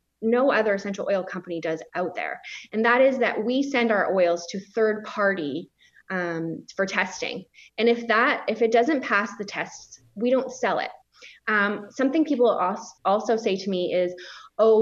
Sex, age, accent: female, 20-39, American